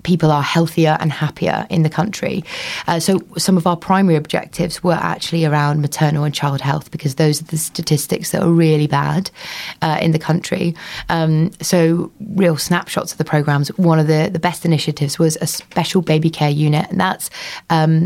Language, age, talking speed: English, 20-39, 190 wpm